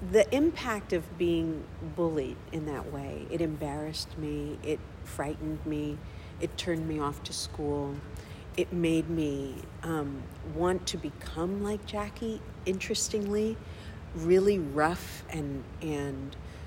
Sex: female